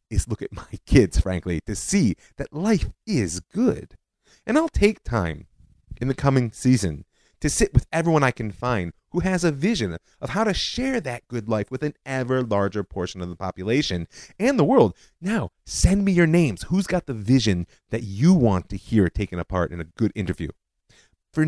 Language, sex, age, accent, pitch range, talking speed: English, male, 30-49, American, 95-135 Hz, 195 wpm